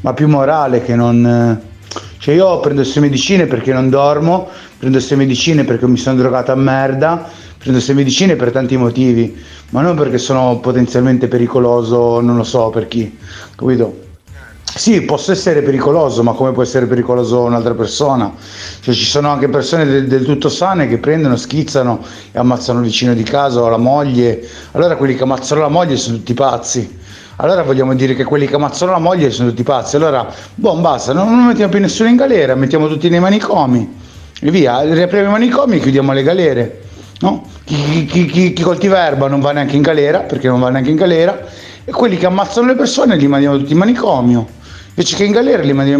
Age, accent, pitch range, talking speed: 30-49, native, 120-150 Hz, 200 wpm